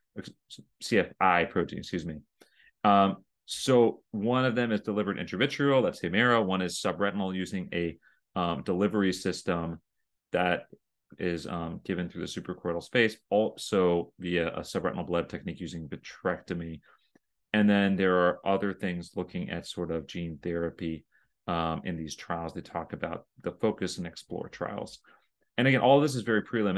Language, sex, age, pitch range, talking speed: English, male, 30-49, 90-105 Hz, 160 wpm